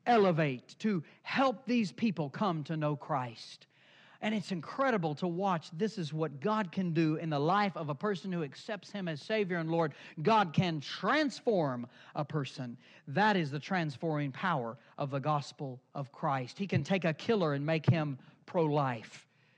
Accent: American